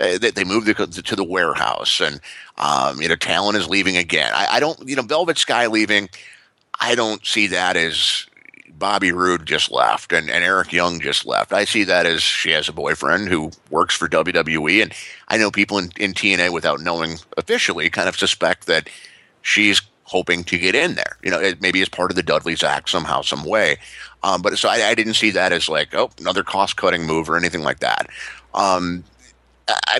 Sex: male